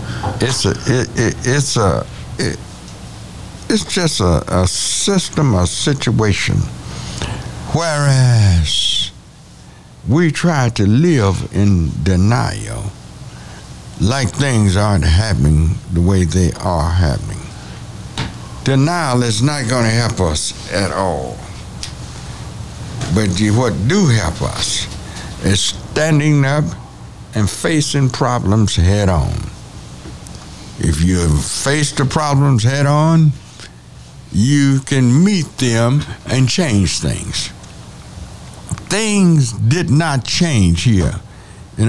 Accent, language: American, English